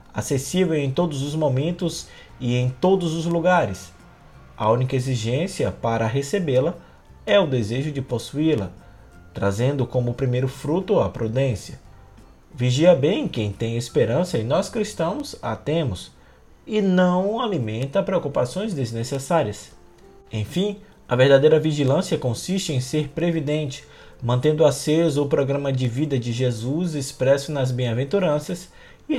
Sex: male